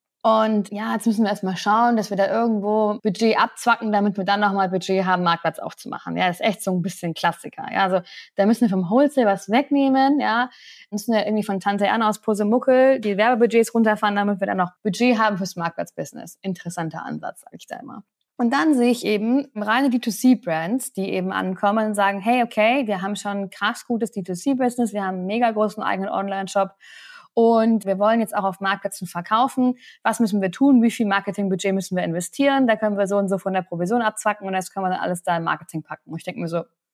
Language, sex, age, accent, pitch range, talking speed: English, female, 20-39, German, 195-235 Hz, 220 wpm